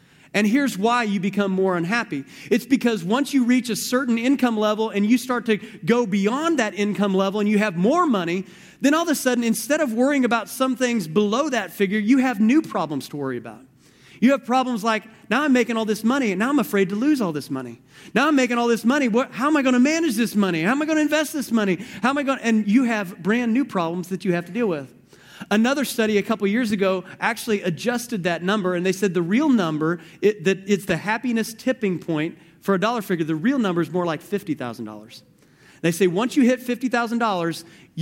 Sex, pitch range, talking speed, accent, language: male, 175-245 Hz, 230 wpm, American, English